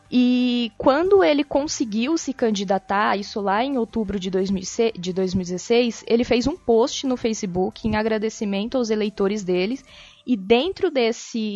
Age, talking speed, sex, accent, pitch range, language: 20-39, 135 wpm, female, Brazilian, 200-245 Hz, Portuguese